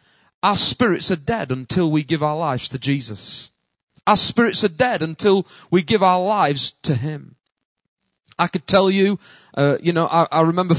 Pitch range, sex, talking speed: 145-195 Hz, male, 180 wpm